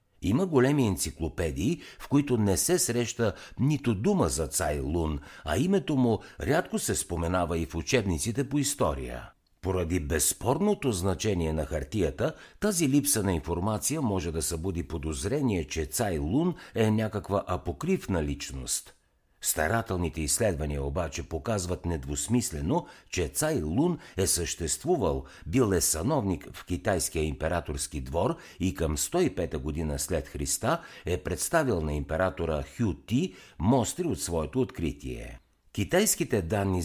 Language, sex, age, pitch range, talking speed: Bulgarian, male, 60-79, 80-120 Hz, 130 wpm